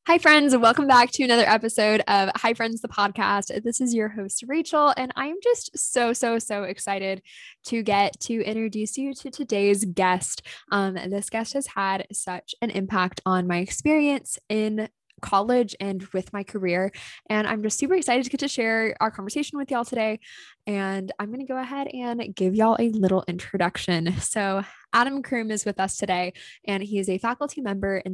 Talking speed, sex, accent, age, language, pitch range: 190 wpm, female, American, 10-29, English, 185-235 Hz